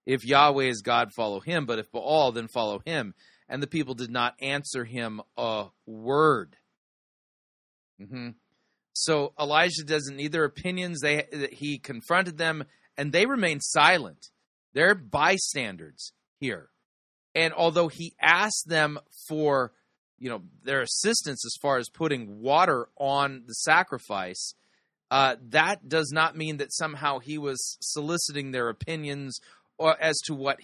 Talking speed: 145 wpm